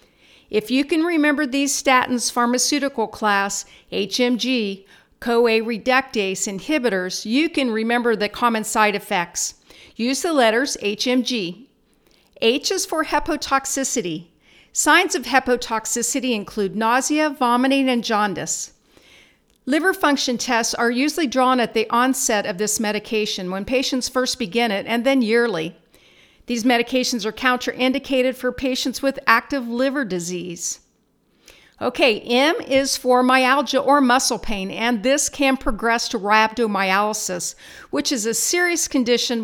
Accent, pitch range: American, 210-260 Hz